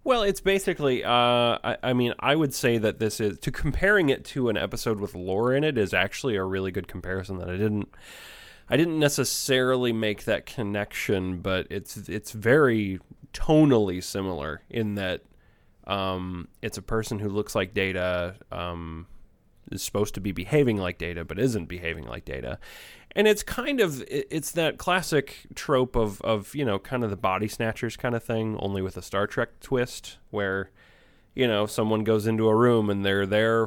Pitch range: 95-120 Hz